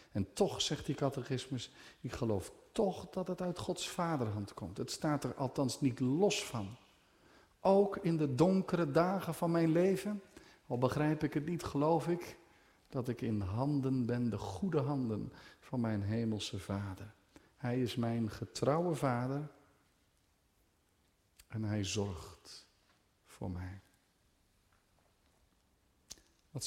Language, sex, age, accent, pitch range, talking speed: Dutch, male, 50-69, Dutch, 100-140 Hz, 135 wpm